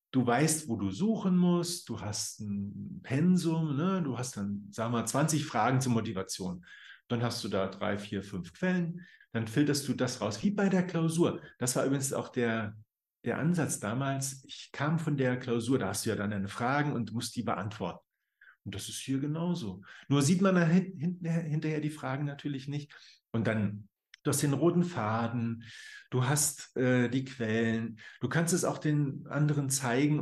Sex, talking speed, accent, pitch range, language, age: male, 185 wpm, German, 115-150 Hz, German, 50-69